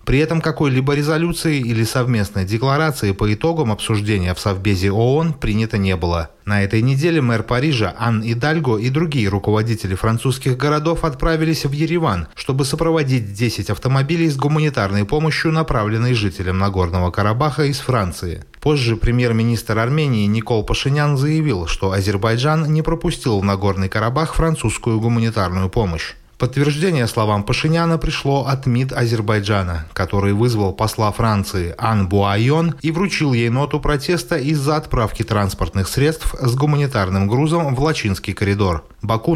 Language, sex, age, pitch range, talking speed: Russian, male, 20-39, 105-150 Hz, 135 wpm